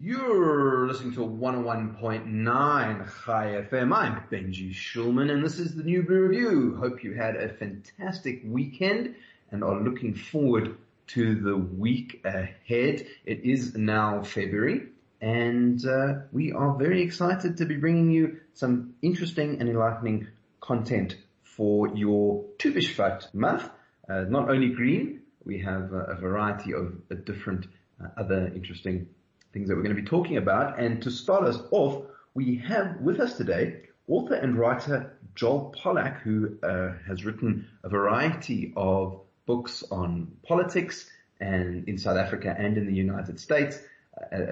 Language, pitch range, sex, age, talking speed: English, 100-140 Hz, male, 30-49, 150 wpm